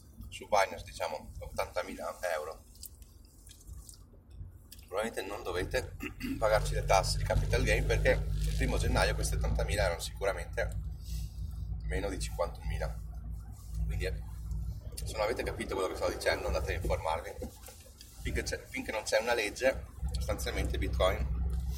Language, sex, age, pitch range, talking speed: Italian, male, 30-49, 80-90 Hz, 125 wpm